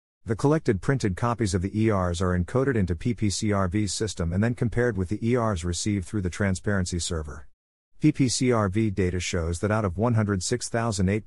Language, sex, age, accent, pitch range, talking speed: English, male, 50-69, American, 90-115 Hz, 160 wpm